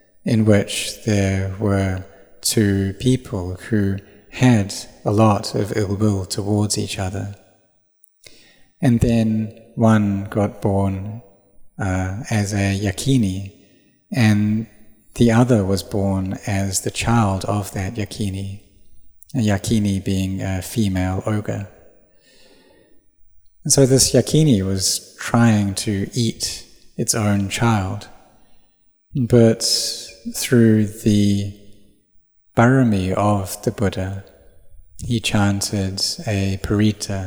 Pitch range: 100-110 Hz